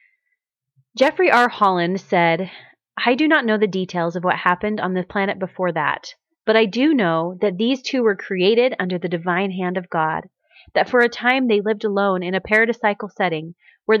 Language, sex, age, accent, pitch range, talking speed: English, female, 30-49, American, 190-240 Hz, 195 wpm